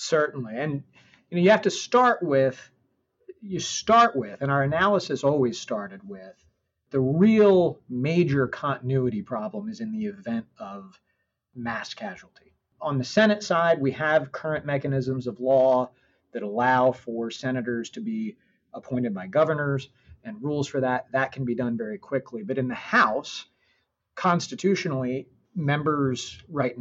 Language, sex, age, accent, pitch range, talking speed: English, male, 40-59, American, 125-170 Hz, 145 wpm